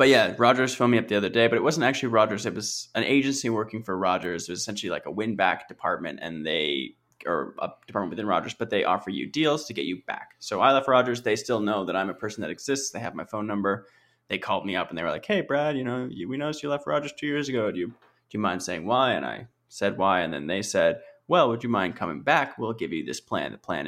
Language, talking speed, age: English, 280 wpm, 20-39